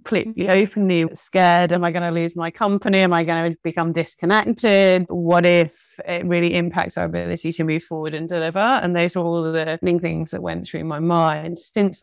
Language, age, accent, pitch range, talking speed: English, 20-39, British, 170-205 Hz, 200 wpm